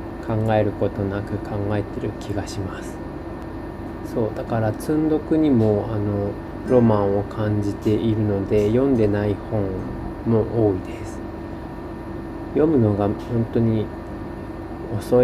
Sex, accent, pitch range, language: male, native, 100-115 Hz, Japanese